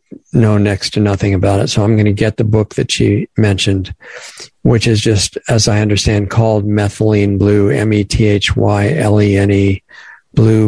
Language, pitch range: English, 100-115 Hz